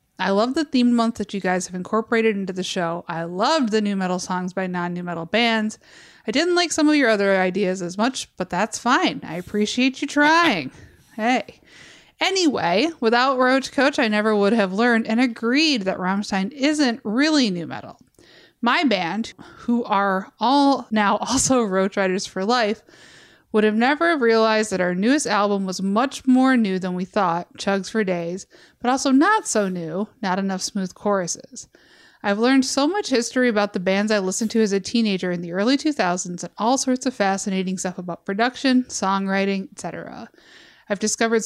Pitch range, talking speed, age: 190-255 Hz, 185 wpm, 20-39